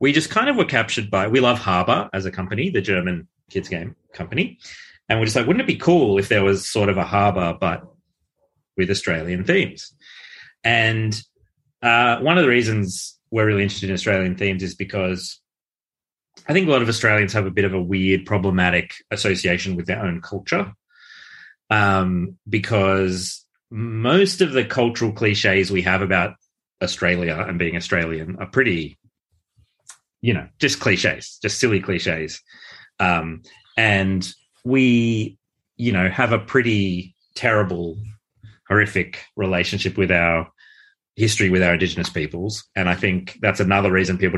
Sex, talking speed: male, 160 wpm